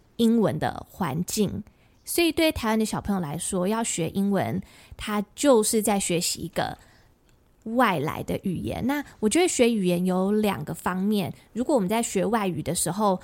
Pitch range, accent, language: 185-245 Hz, American, Chinese